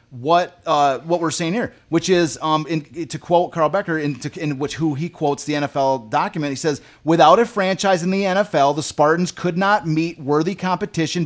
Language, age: English, 30-49